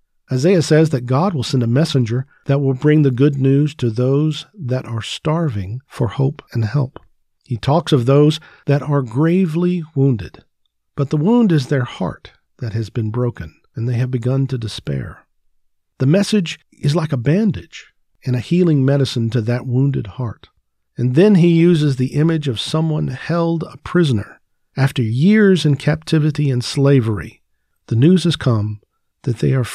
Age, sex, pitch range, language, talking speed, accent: 50-69, male, 120-155 Hz, English, 170 wpm, American